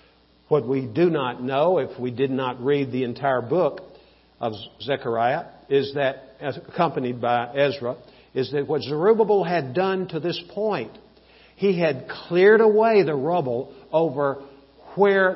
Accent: American